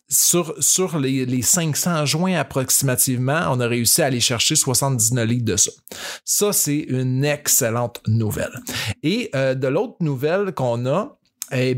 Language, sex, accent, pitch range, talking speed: French, male, Canadian, 125-165 Hz, 155 wpm